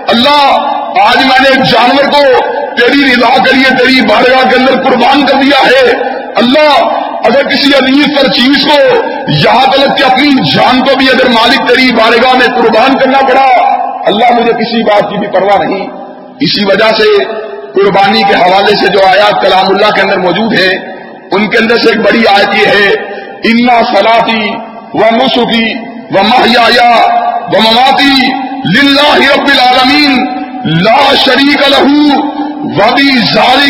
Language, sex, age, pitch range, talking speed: Urdu, male, 50-69, 235-280 Hz, 145 wpm